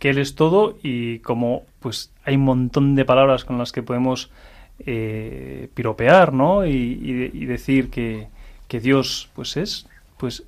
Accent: Spanish